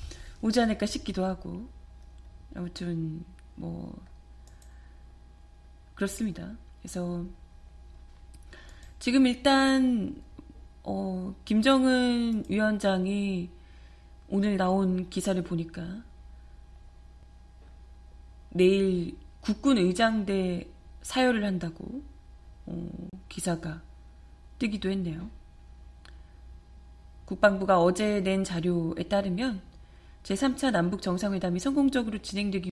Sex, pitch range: female, 165-215 Hz